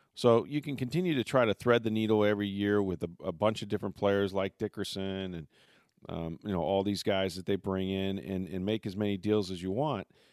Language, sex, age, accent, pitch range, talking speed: English, male, 40-59, American, 95-110 Hz, 240 wpm